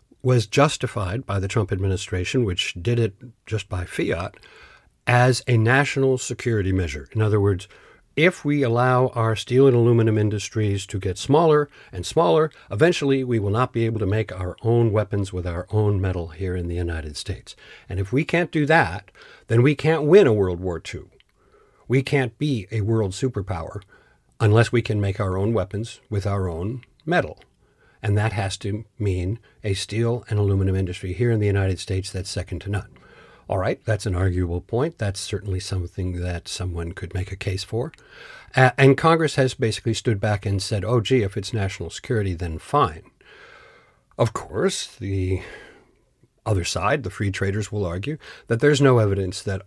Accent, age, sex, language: American, 60-79, male, English